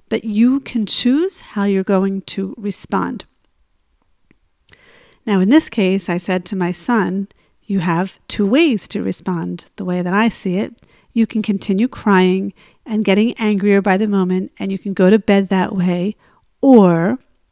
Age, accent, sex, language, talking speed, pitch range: 50-69, American, female, English, 170 wpm, 190-230 Hz